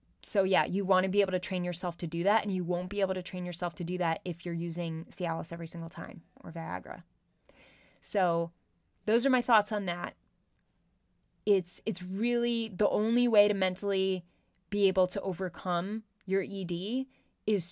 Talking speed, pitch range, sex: 185 wpm, 175-210 Hz, female